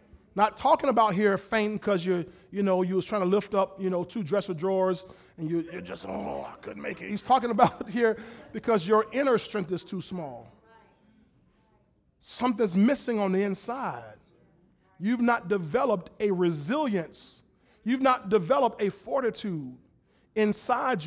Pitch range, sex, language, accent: 170-220 Hz, male, English, American